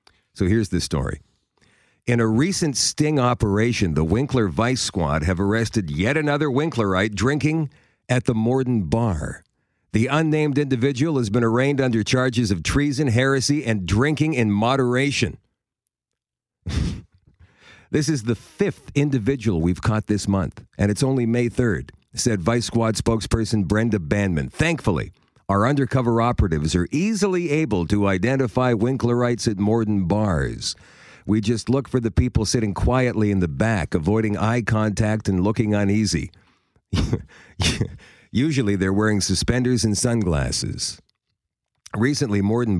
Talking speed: 135 wpm